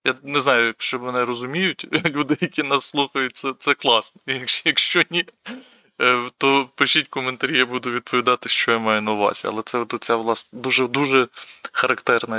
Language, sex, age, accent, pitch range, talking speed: Ukrainian, male, 20-39, native, 115-135 Hz, 165 wpm